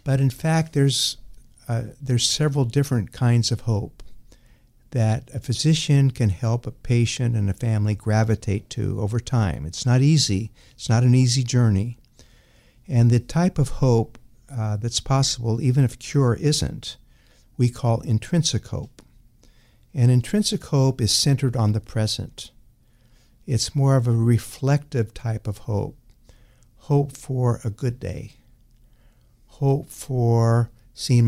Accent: American